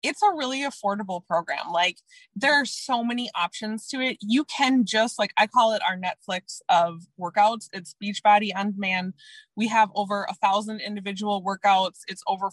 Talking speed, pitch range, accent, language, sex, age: 175 wpm, 200-260 Hz, American, English, female, 20-39